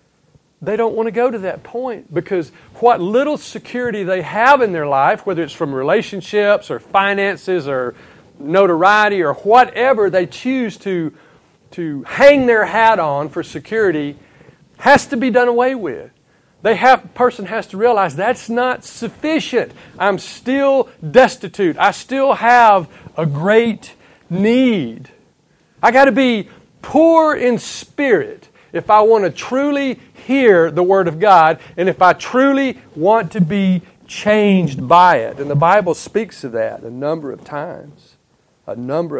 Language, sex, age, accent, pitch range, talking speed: English, male, 50-69, American, 165-245 Hz, 150 wpm